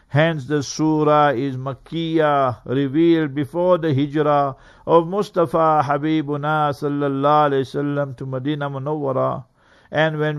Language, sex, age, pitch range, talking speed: English, male, 60-79, 145-165 Hz, 110 wpm